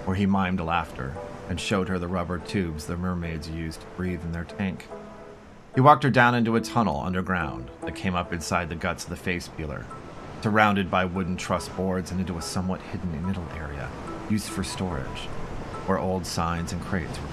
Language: English